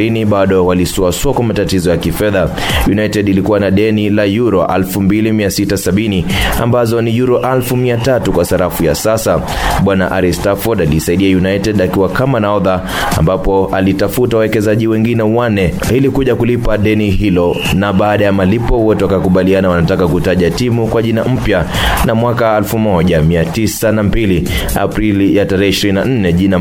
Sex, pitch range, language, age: male, 90-110 Hz, Swahili, 20-39